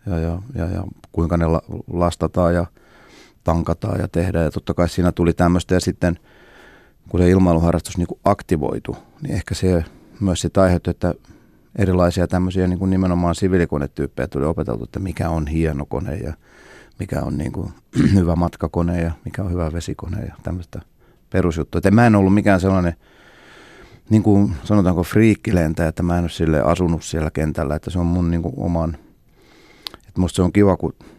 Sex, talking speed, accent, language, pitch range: male, 160 wpm, native, Finnish, 80-95 Hz